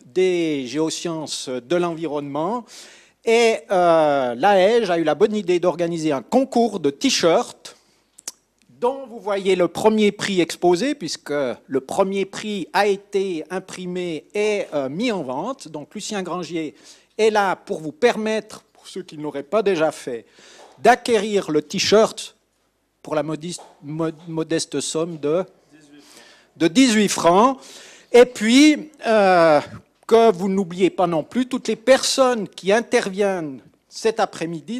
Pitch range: 160-220 Hz